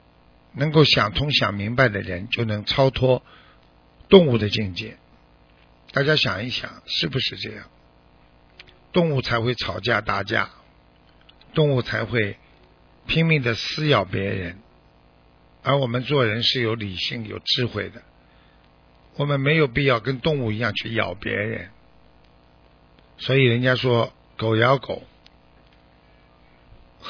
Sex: male